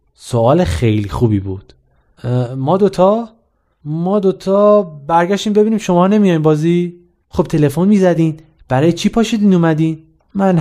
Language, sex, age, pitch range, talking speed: Persian, male, 30-49, 120-170 Hz, 125 wpm